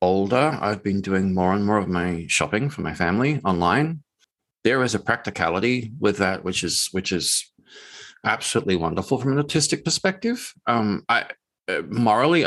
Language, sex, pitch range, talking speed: English, male, 95-135 Hz, 160 wpm